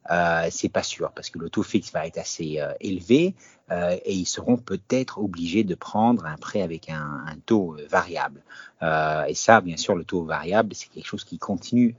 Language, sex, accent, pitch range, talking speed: French, male, French, 85-115 Hz, 210 wpm